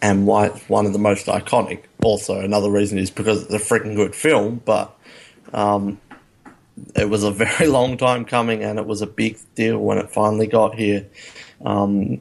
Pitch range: 105-125 Hz